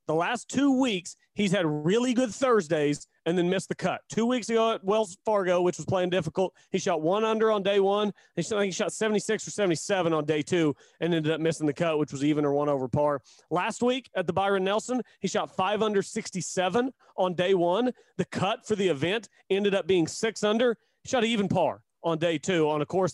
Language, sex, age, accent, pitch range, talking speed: English, male, 40-59, American, 170-215 Hz, 220 wpm